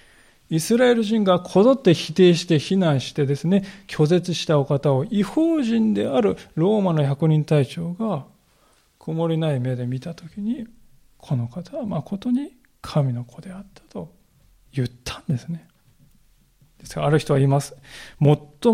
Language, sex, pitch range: Japanese, male, 140-185 Hz